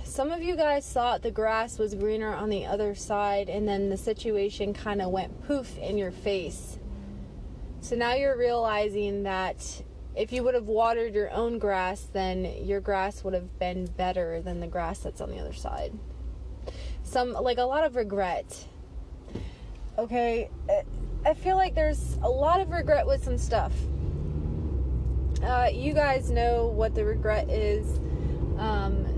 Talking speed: 160 wpm